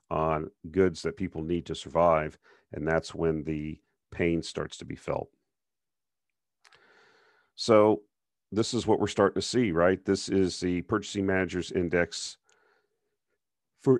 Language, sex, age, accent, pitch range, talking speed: English, male, 50-69, American, 85-100 Hz, 135 wpm